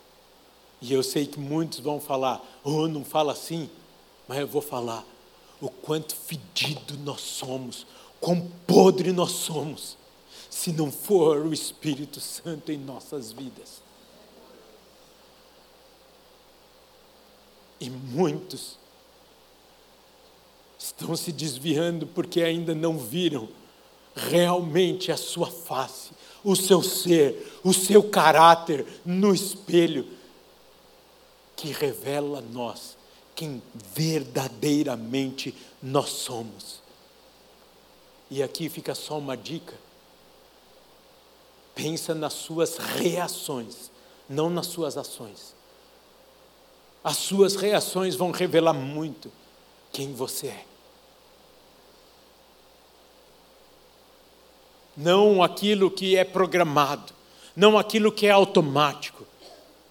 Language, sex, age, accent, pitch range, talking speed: Portuguese, male, 60-79, Brazilian, 140-180 Hz, 95 wpm